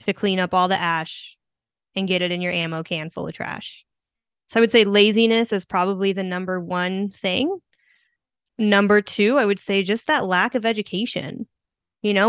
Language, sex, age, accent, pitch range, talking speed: English, female, 20-39, American, 195-240 Hz, 190 wpm